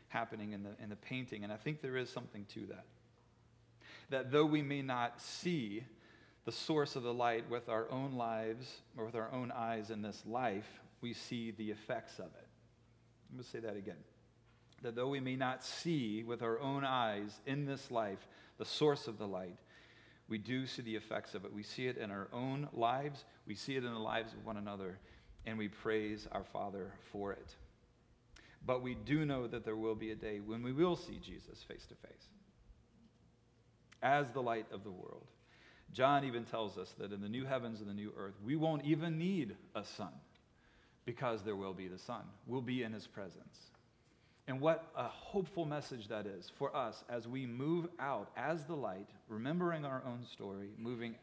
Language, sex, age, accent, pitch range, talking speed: English, male, 40-59, American, 110-130 Hz, 200 wpm